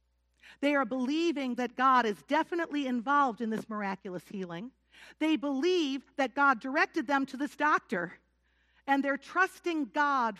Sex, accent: female, American